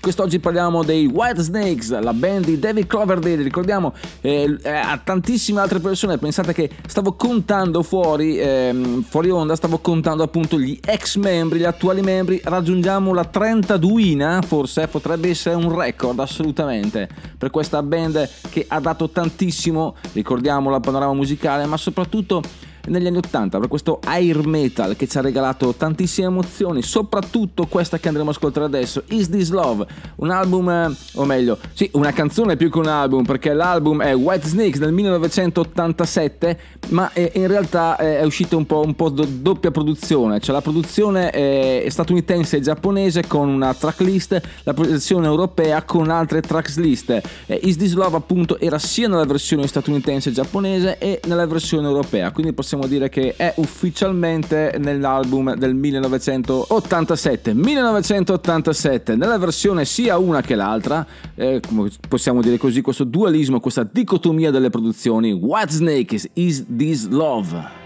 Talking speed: 150 wpm